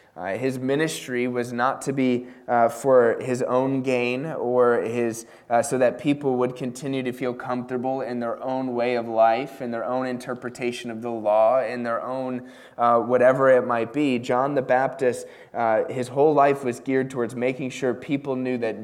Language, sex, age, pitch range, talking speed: English, male, 20-39, 115-135 Hz, 190 wpm